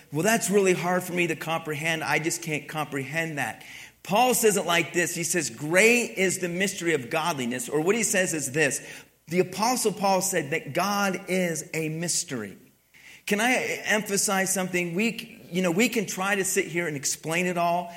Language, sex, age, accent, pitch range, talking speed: English, male, 40-59, American, 175-230 Hz, 195 wpm